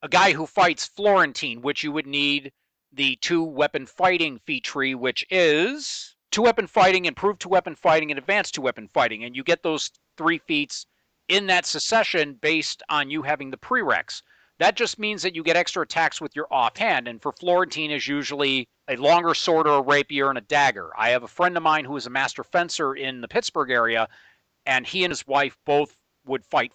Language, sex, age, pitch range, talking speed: English, male, 40-59, 135-180 Hz, 190 wpm